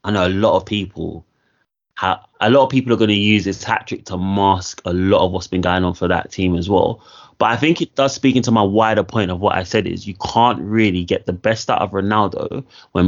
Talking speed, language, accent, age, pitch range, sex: 240 wpm, English, British, 20-39, 95-115 Hz, male